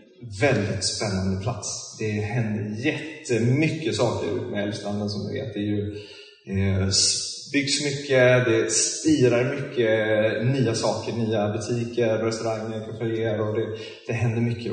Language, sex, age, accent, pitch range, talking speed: Swedish, male, 20-39, native, 105-125 Hz, 120 wpm